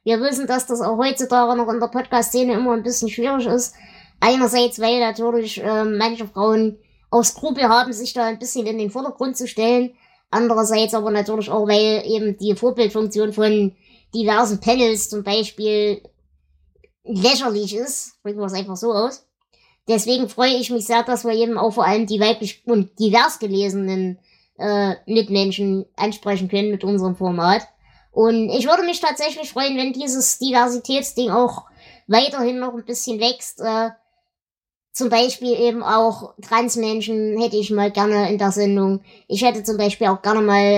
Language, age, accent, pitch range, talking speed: German, 20-39, German, 210-240 Hz, 165 wpm